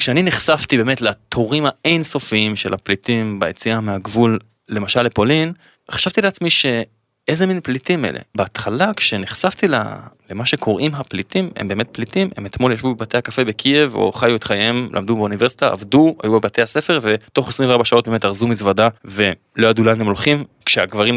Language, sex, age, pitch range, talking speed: Hebrew, male, 20-39, 110-145 Hz, 145 wpm